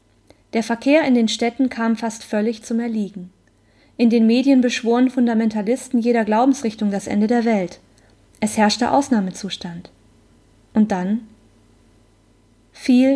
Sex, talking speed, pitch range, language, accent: female, 125 wpm, 190-235 Hz, German, German